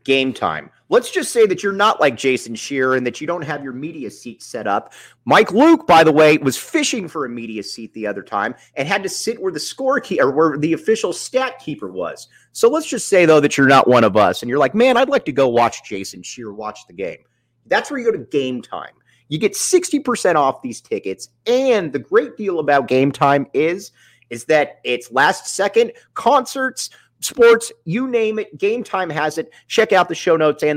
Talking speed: 225 wpm